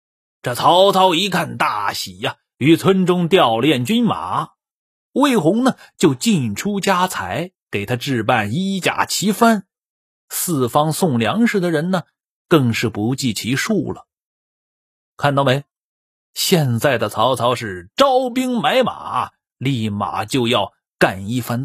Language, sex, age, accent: Chinese, male, 30-49, native